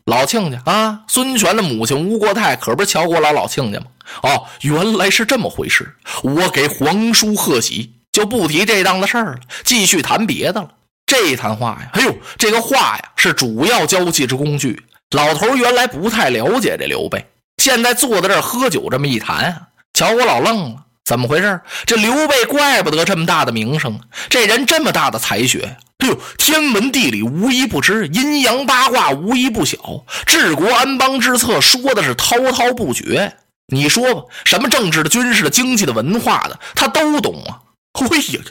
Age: 20-39